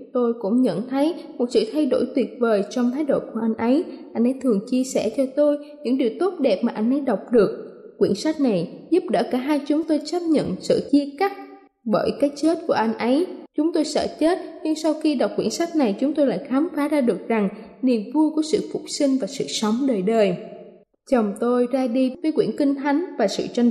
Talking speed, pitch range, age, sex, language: 235 wpm, 230-285 Hz, 20-39, female, Vietnamese